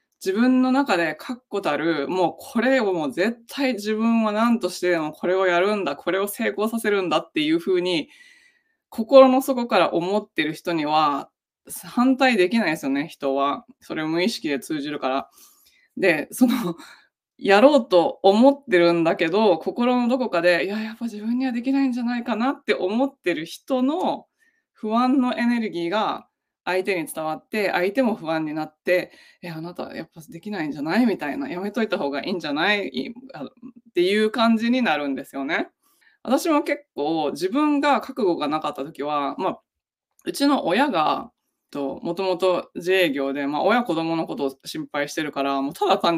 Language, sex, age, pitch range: Japanese, female, 20-39, 170-260 Hz